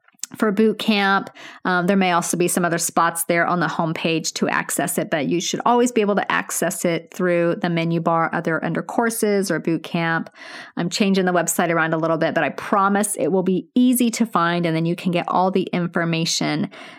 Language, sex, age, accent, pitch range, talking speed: English, female, 30-49, American, 180-245 Hz, 220 wpm